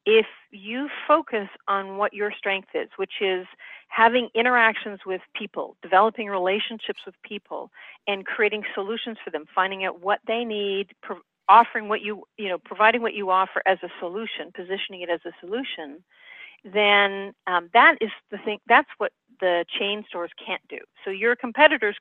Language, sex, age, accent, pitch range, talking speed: English, female, 40-59, American, 190-230 Hz, 165 wpm